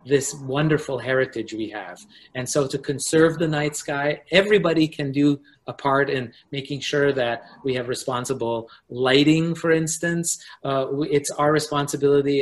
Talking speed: 150 wpm